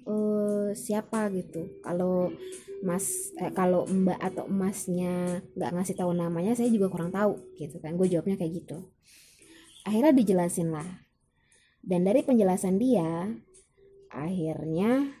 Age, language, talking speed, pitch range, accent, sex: 20-39, Indonesian, 120 wpm, 175-240 Hz, native, female